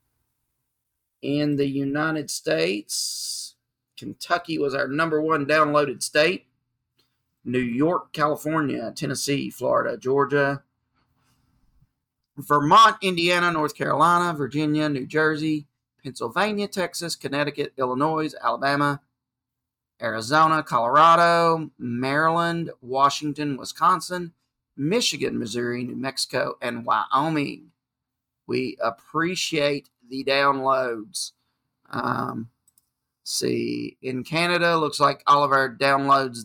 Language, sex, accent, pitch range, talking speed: English, male, American, 125-150 Hz, 90 wpm